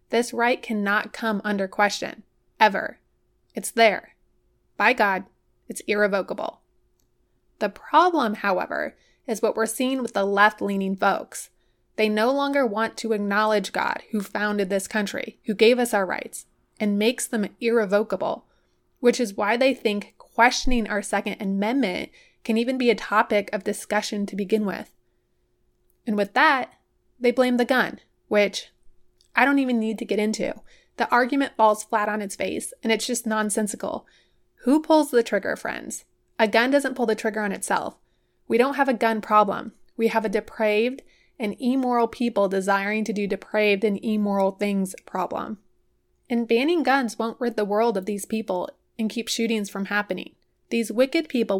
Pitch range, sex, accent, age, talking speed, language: 205-240 Hz, female, American, 20-39, 165 wpm, English